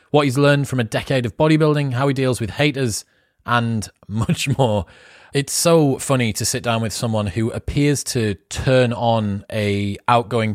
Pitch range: 105-135 Hz